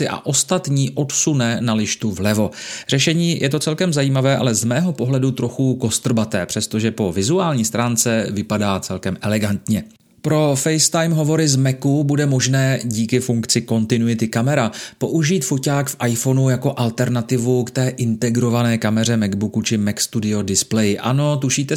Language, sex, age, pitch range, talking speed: Czech, male, 30-49, 110-140 Hz, 145 wpm